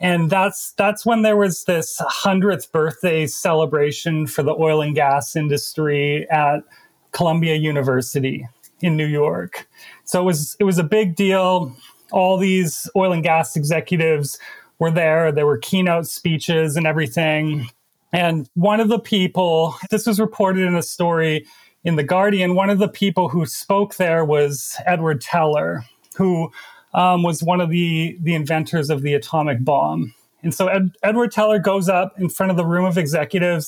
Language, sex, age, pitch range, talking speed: English, male, 30-49, 160-190 Hz, 165 wpm